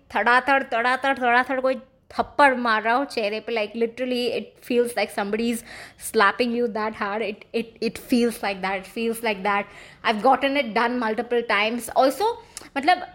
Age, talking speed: 20-39, 180 wpm